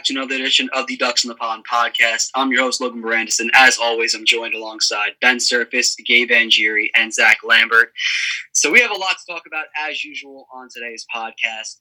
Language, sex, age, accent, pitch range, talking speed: English, male, 20-39, American, 120-150 Hz, 205 wpm